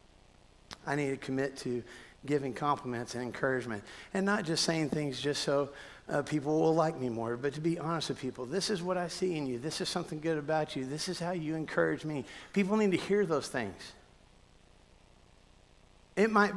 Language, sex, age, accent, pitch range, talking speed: English, male, 50-69, American, 130-180 Hz, 200 wpm